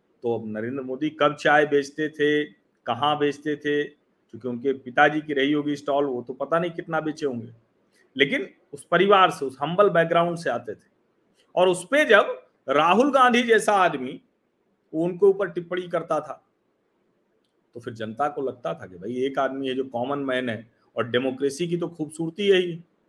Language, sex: Hindi, male